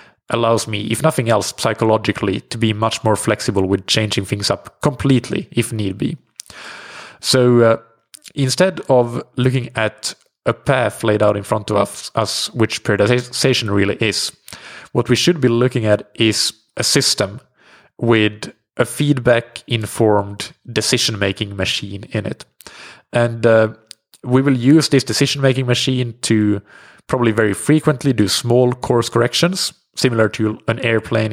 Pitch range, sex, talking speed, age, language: 110-135 Hz, male, 150 wpm, 30-49, English